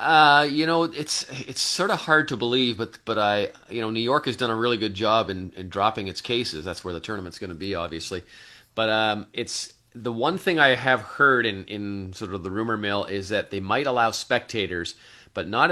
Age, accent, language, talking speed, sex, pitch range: 30-49, American, English, 230 wpm, male, 95-120 Hz